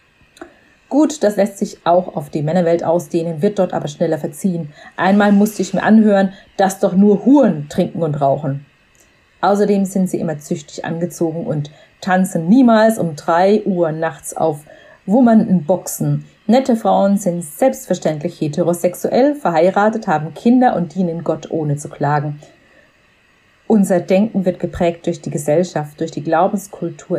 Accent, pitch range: German, 165-205 Hz